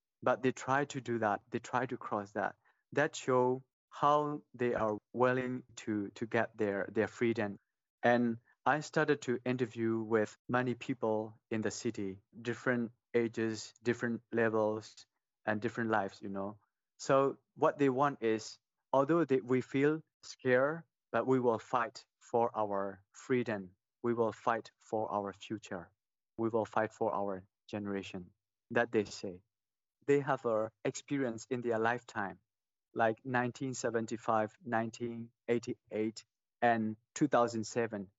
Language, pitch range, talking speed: English, 110-130 Hz, 135 wpm